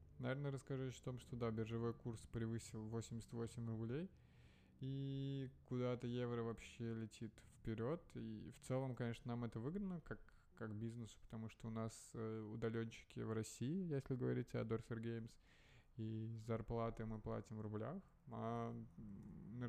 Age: 20-39